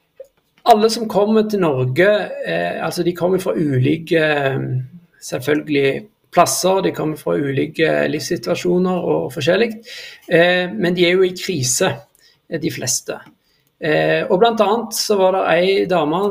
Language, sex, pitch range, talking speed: English, male, 155-200 Hz, 150 wpm